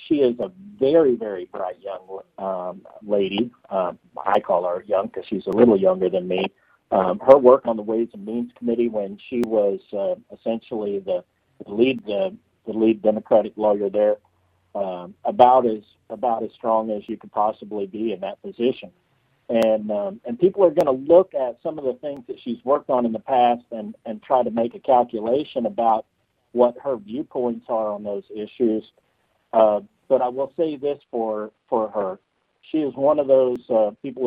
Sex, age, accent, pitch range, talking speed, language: male, 50-69, American, 110-135 Hz, 190 wpm, English